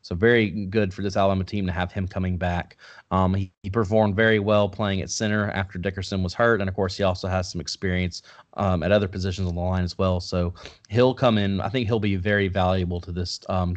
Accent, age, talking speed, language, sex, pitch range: American, 30-49, 240 wpm, English, male, 95-110 Hz